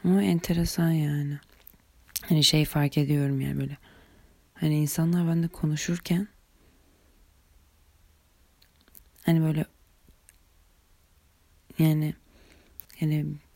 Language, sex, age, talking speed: Turkish, female, 30-49, 75 wpm